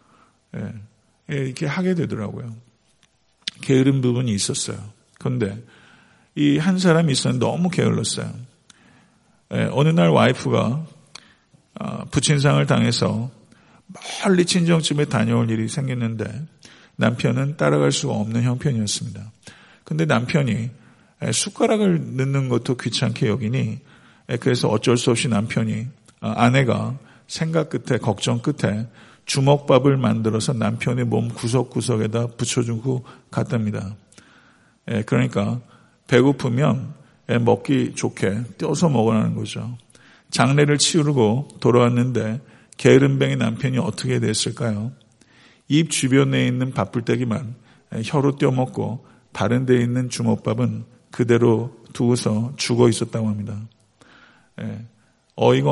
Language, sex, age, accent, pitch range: Korean, male, 50-69, native, 115-135 Hz